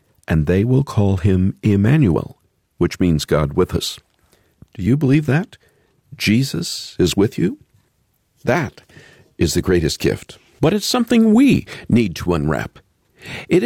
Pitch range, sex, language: 95-140 Hz, male, English